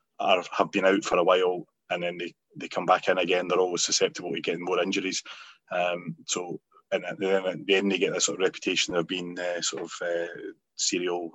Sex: male